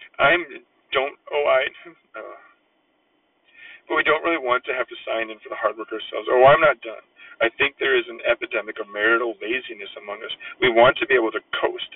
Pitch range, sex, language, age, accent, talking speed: 350-440 Hz, male, English, 40-59, American, 210 wpm